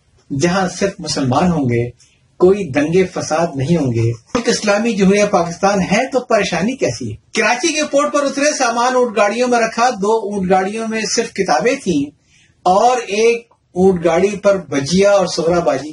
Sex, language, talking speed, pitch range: male, Urdu, 165 wpm, 145-210 Hz